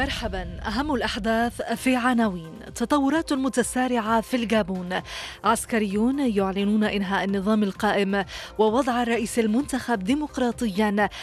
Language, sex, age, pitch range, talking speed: English, female, 20-39, 205-240 Hz, 95 wpm